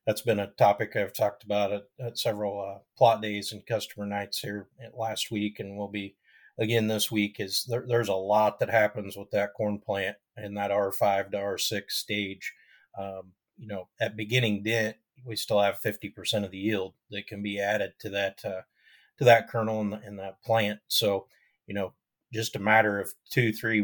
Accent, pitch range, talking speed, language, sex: American, 100-110 Hz, 195 wpm, English, male